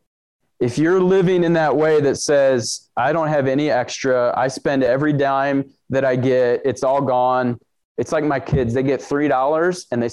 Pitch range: 130-165 Hz